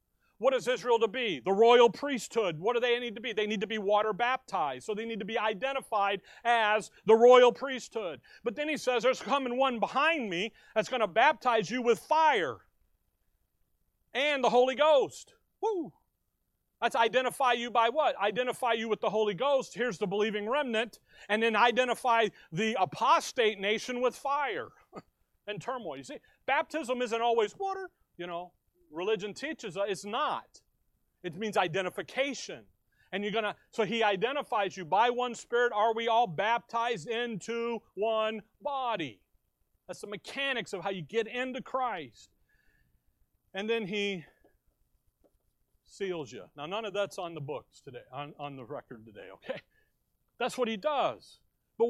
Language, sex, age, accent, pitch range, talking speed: English, male, 40-59, American, 210-255 Hz, 165 wpm